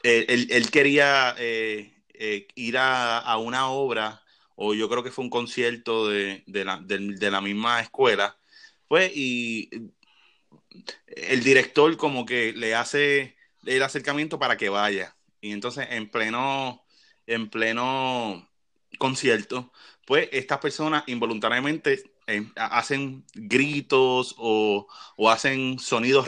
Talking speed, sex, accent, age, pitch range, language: 130 wpm, male, Venezuelan, 20-39, 110-140 Hz, Spanish